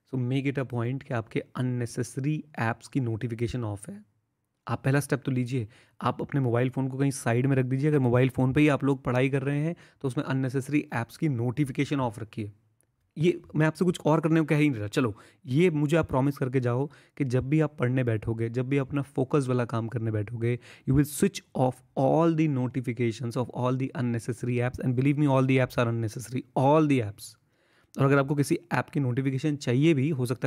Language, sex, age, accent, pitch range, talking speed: Hindi, male, 30-49, native, 125-155 Hz, 225 wpm